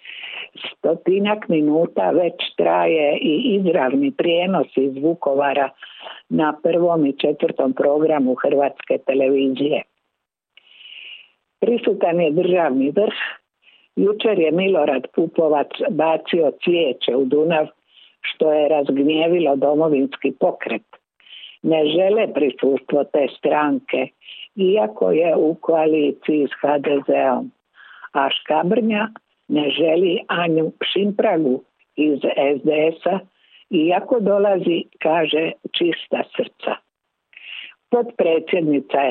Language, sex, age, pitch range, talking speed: Croatian, female, 50-69, 145-190 Hz, 90 wpm